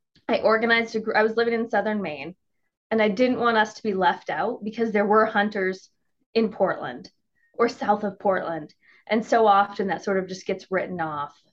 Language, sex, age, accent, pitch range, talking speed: English, female, 20-39, American, 190-225 Hz, 205 wpm